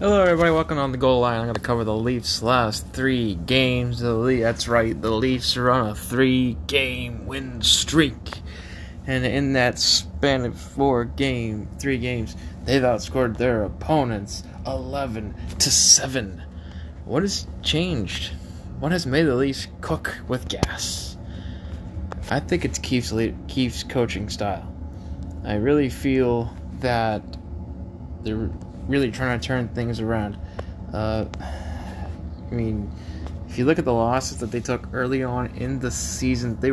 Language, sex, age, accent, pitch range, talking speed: English, male, 20-39, American, 90-125 Hz, 145 wpm